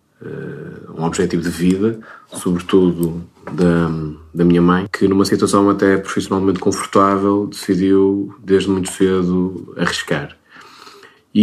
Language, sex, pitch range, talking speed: Portuguese, male, 90-105 Hz, 110 wpm